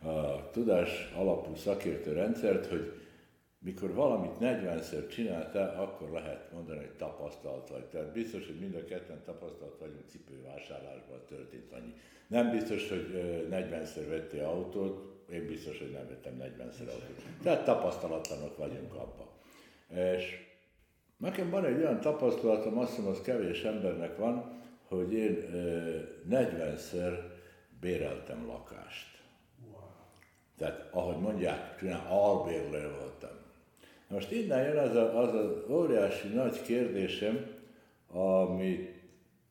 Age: 60-79